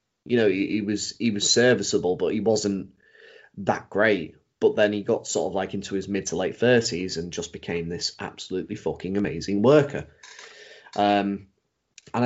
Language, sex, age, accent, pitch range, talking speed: English, male, 30-49, British, 105-140 Hz, 175 wpm